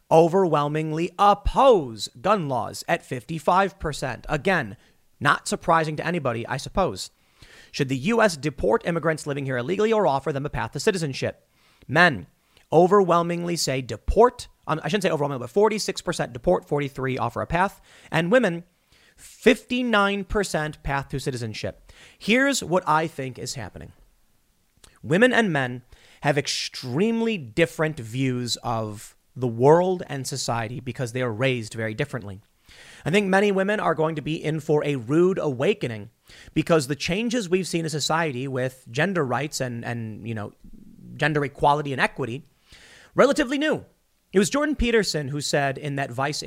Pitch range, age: 130-185 Hz, 30-49